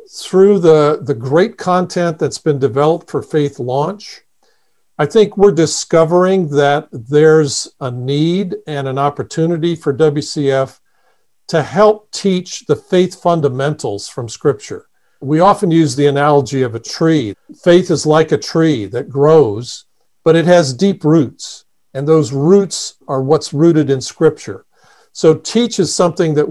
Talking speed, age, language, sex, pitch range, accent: 145 wpm, 50-69, English, male, 140-175 Hz, American